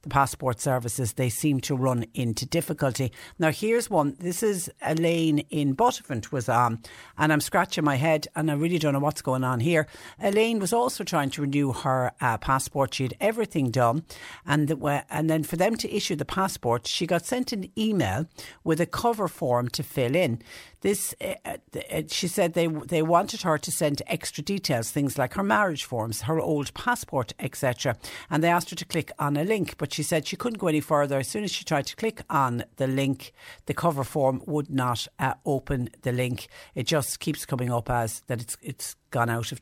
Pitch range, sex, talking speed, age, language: 125-160 Hz, female, 205 wpm, 60-79, English